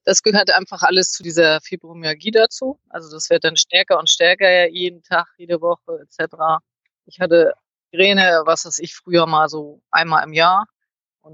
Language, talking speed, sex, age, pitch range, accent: German, 180 wpm, female, 30-49, 155-185 Hz, German